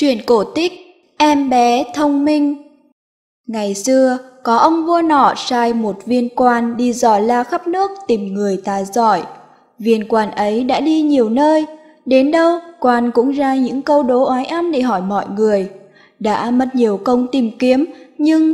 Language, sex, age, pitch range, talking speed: Vietnamese, female, 20-39, 230-310 Hz, 175 wpm